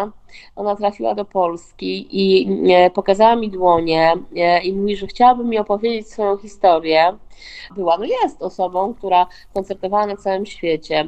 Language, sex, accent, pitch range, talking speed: Polish, female, native, 180-220 Hz, 135 wpm